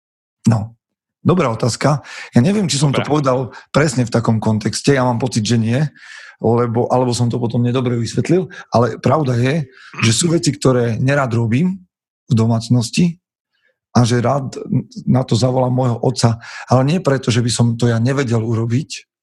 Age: 40-59